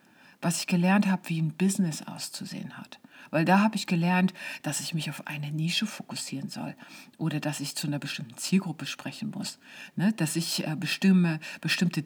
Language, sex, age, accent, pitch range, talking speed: German, female, 50-69, German, 160-210 Hz, 185 wpm